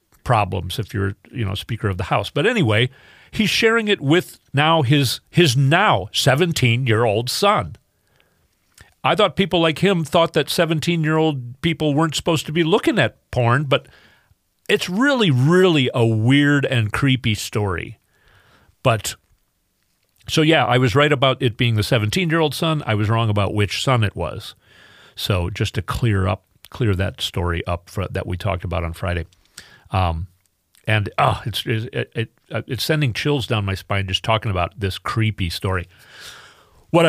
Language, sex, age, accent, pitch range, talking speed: English, male, 40-59, American, 105-155 Hz, 165 wpm